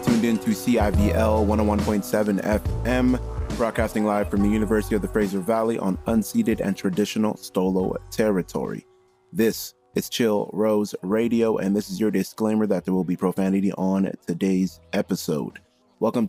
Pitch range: 95-115 Hz